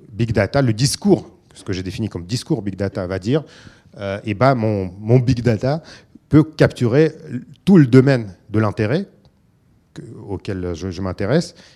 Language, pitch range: French, 100-135 Hz